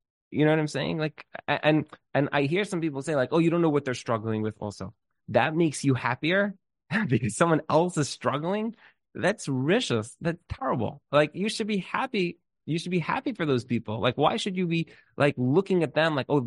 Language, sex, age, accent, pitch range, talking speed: English, male, 20-39, American, 115-165 Hz, 215 wpm